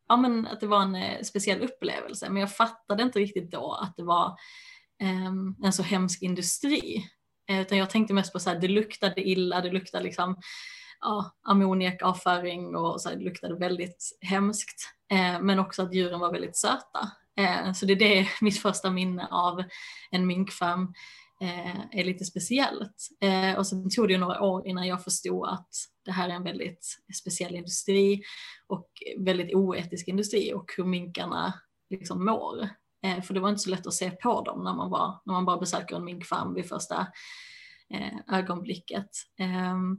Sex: female